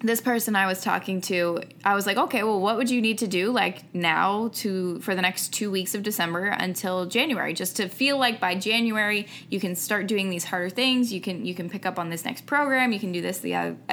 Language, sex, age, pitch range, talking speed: English, female, 20-39, 180-225 Hz, 250 wpm